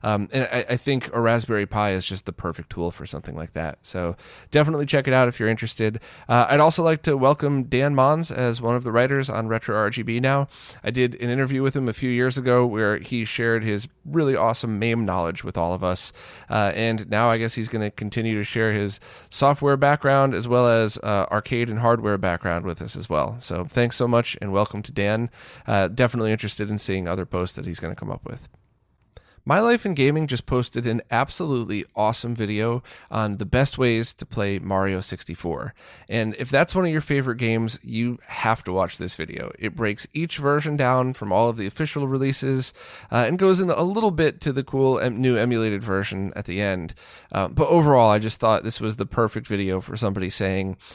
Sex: male